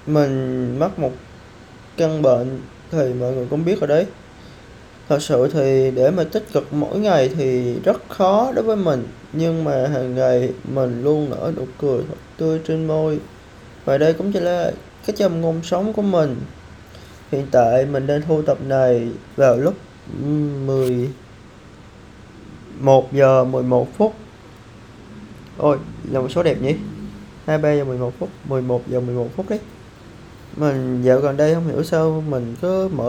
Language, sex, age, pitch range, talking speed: Vietnamese, male, 20-39, 125-160 Hz, 155 wpm